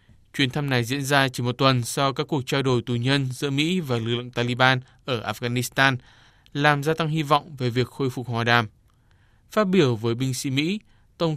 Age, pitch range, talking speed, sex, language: 20-39, 120-150 Hz, 215 wpm, male, Vietnamese